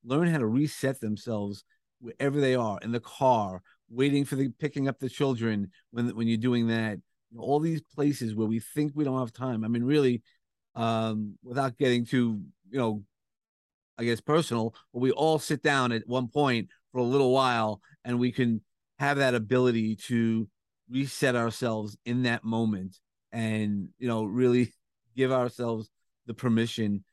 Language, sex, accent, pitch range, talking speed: English, male, American, 110-130 Hz, 170 wpm